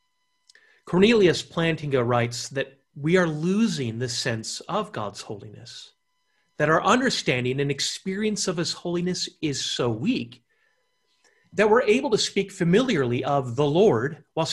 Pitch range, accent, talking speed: 150-235 Hz, American, 135 wpm